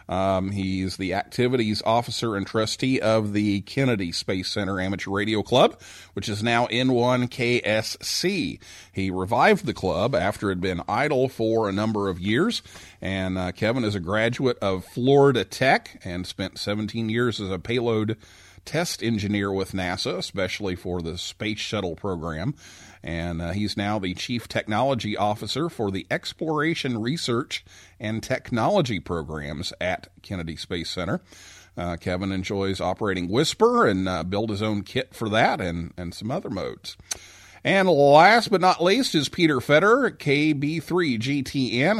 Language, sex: English, male